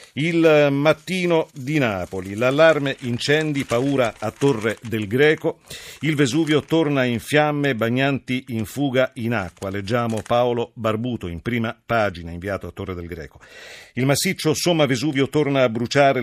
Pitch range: 110-140 Hz